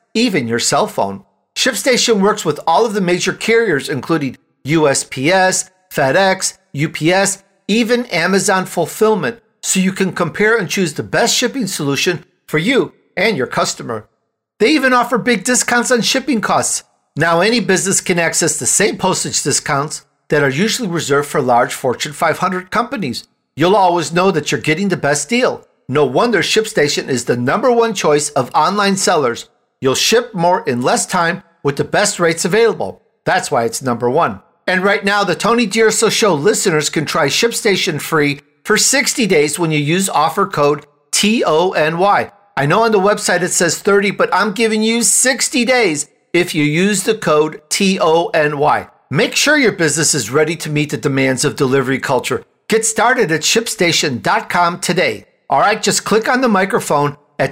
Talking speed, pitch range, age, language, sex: 170 wpm, 150-215 Hz, 50-69, English, male